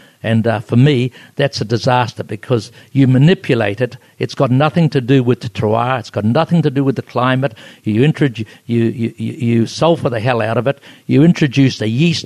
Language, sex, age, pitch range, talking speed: English, male, 60-79, 115-140 Hz, 200 wpm